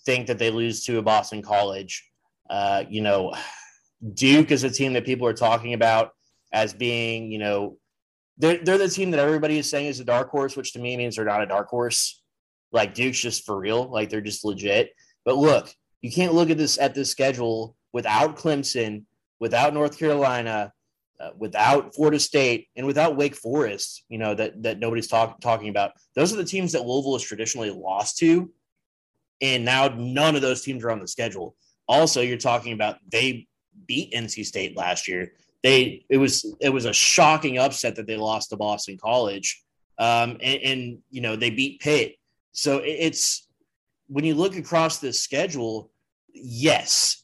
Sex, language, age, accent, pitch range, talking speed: male, English, 20-39, American, 110-140 Hz, 185 wpm